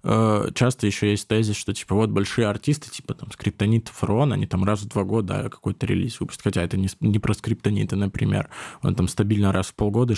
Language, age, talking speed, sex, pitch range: Russian, 20-39, 205 wpm, male, 100-120 Hz